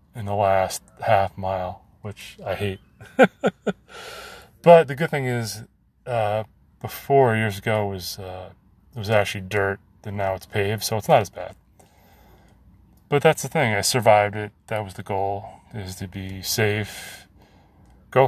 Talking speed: 160 wpm